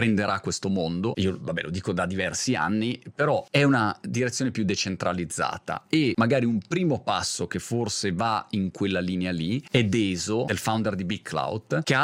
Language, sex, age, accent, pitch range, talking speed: Italian, male, 30-49, native, 105-140 Hz, 185 wpm